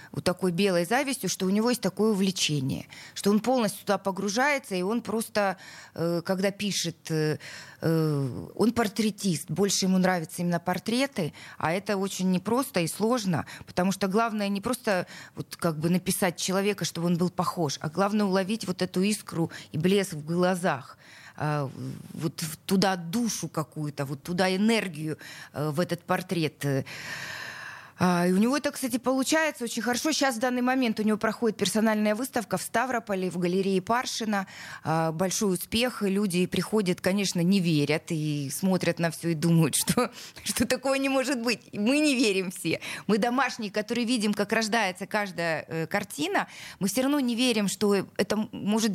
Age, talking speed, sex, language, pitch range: 20-39, 155 wpm, female, Russian, 175-225 Hz